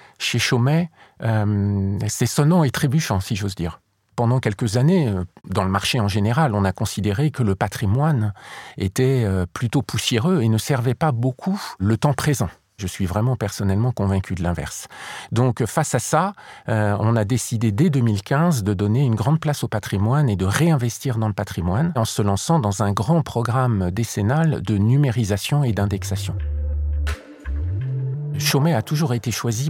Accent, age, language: French, 50-69, French